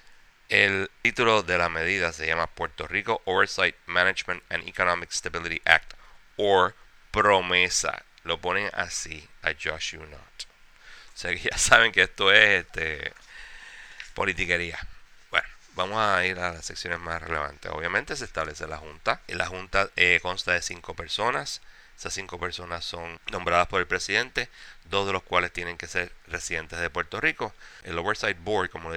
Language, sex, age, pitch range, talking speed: English, male, 30-49, 85-95 Hz, 165 wpm